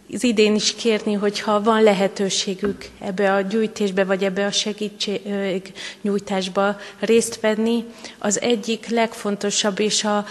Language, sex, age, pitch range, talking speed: Hungarian, female, 30-49, 195-215 Hz, 115 wpm